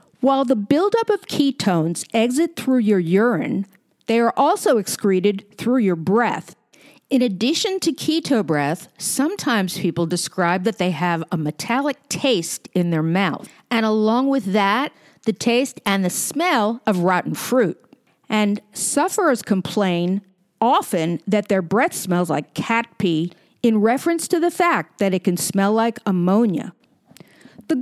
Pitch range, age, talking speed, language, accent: 195-285 Hz, 50-69, 145 wpm, English, American